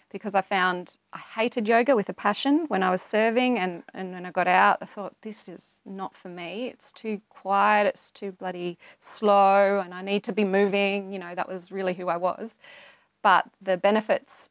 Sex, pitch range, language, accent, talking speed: female, 180-215 Hz, English, Australian, 205 wpm